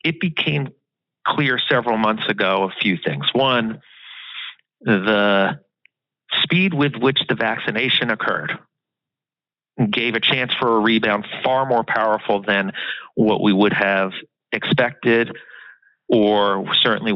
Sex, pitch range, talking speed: male, 110-145 Hz, 120 wpm